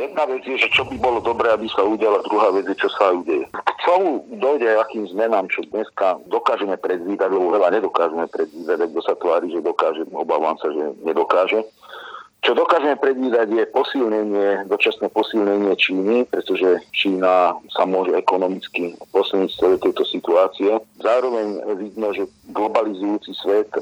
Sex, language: male, Slovak